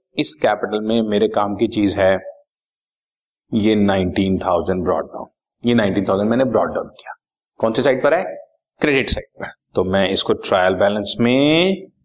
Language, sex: Hindi, male